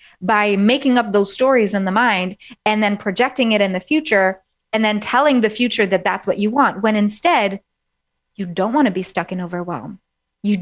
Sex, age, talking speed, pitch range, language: female, 30-49, 205 wpm, 190-230 Hz, English